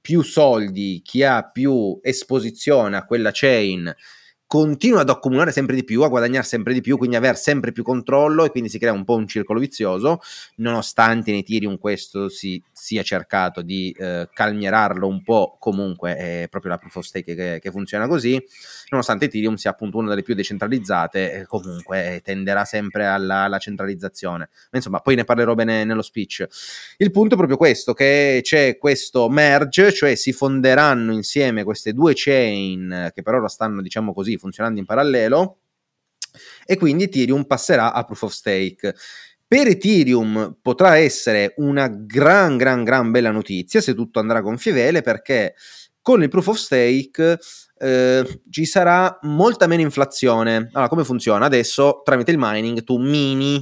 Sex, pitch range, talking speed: male, 100-140 Hz, 165 wpm